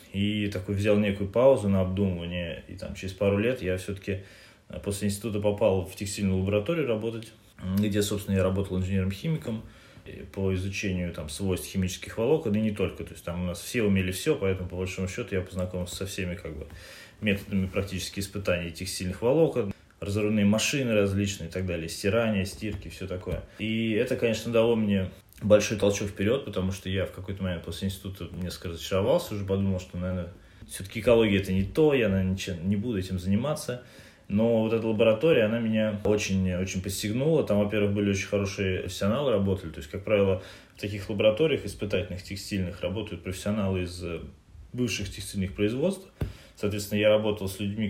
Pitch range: 95-105 Hz